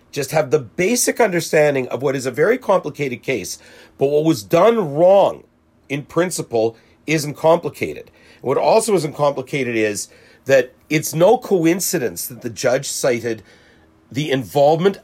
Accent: American